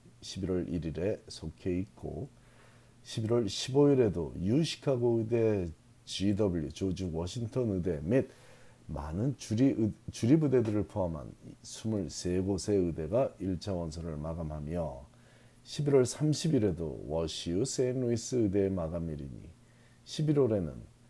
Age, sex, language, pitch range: 40-59, male, Korean, 90-120 Hz